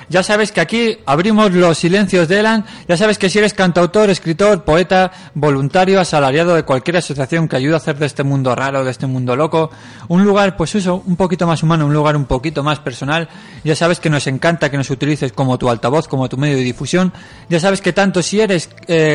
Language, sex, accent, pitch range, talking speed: Spanish, male, Spanish, 140-175 Hz, 225 wpm